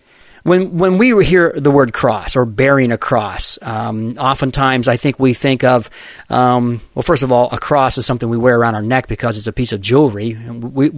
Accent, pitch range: American, 125-170 Hz